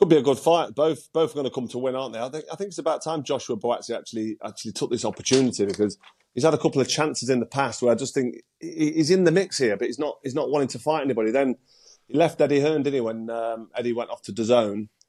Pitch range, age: 115-140 Hz, 30-49